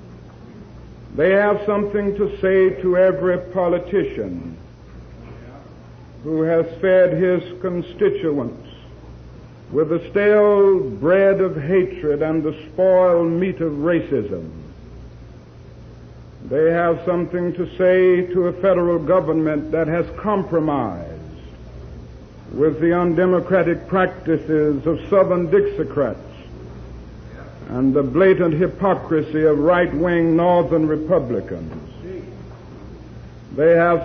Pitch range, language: 145-185 Hz, English